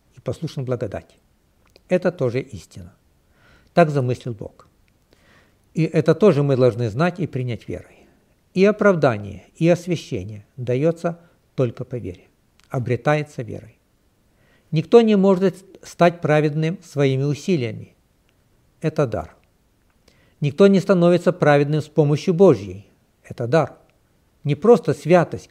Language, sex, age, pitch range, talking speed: Russian, male, 60-79, 120-170 Hz, 115 wpm